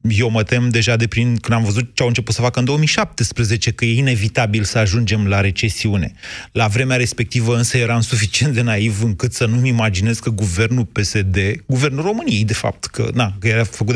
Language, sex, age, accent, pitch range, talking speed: Romanian, male, 30-49, native, 110-155 Hz, 200 wpm